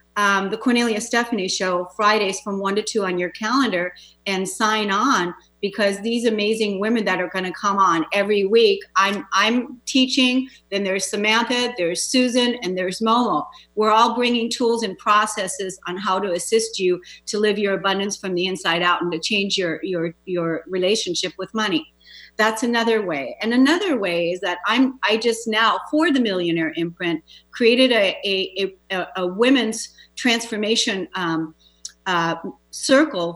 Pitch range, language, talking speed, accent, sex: 180-235 Hz, English, 165 wpm, American, female